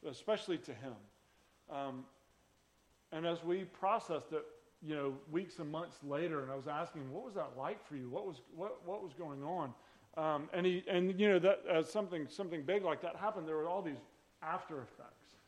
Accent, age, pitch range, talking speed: American, 40-59, 140-180 Hz, 200 wpm